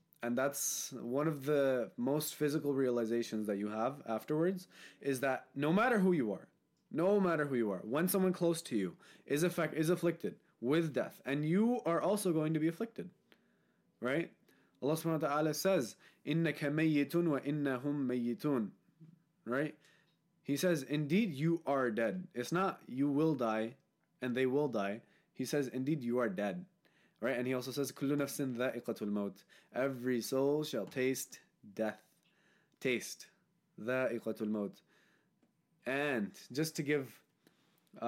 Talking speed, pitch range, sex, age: 150 wpm, 120-165 Hz, male, 20-39